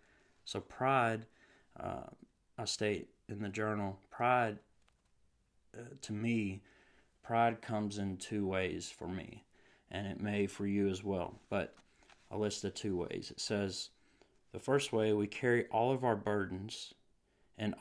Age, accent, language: 30-49, American, English